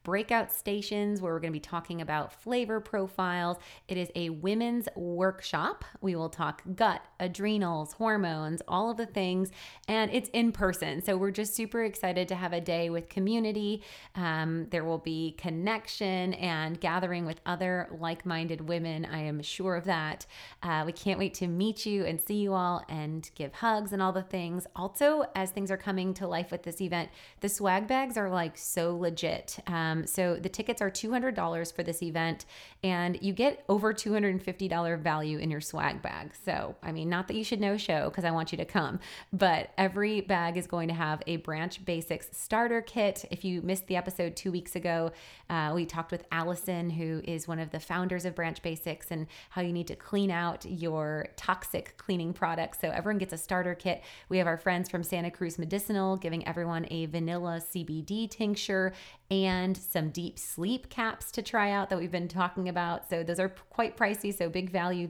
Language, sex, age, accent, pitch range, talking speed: English, female, 20-39, American, 170-195 Hz, 195 wpm